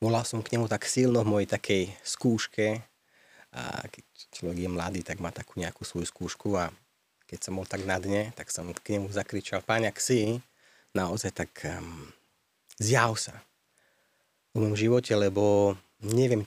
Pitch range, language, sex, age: 95-115 Hz, Slovak, male, 30-49